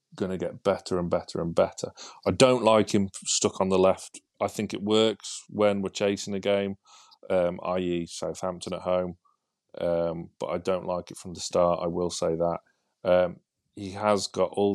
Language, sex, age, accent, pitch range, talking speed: English, male, 30-49, British, 90-100 Hz, 190 wpm